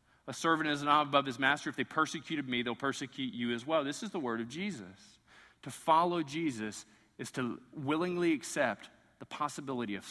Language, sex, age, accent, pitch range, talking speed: English, male, 40-59, American, 125-190 Hz, 190 wpm